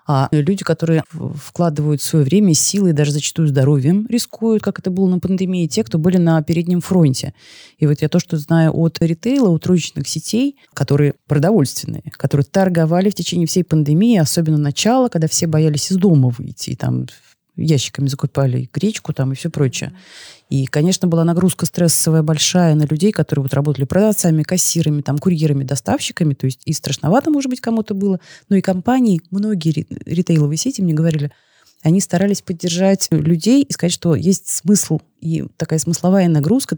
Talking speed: 165 wpm